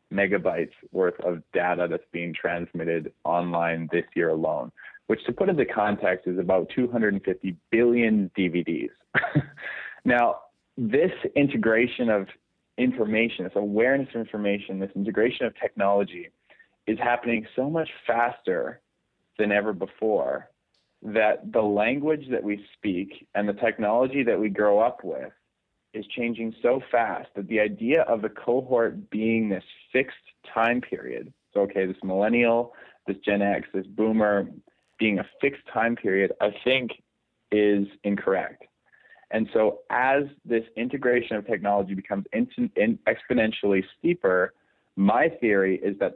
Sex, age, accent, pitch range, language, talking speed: male, 30-49, American, 95-120 Hz, English, 135 wpm